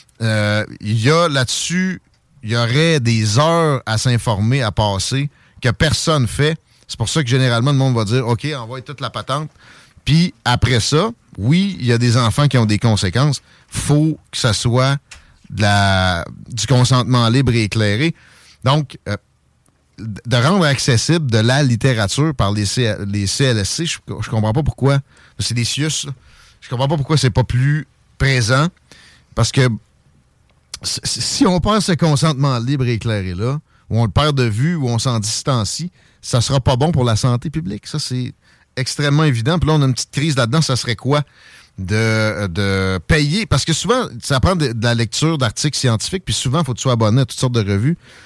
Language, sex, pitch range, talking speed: French, male, 115-150 Hz, 195 wpm